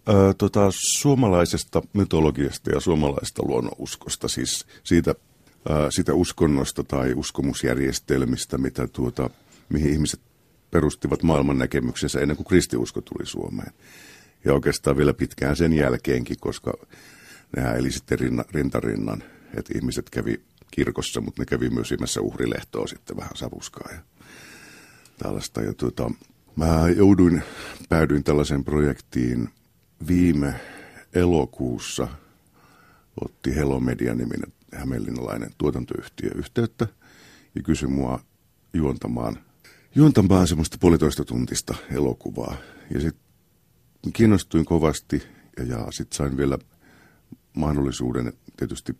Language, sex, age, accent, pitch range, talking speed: Finnish, male, 50-69, native, 65-90 Hz, 105 wpm